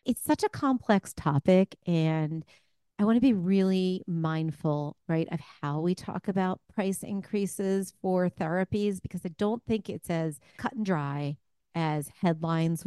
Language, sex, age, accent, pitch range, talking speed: English, female, 40-59, American, 155-185 Hz, 155 wpm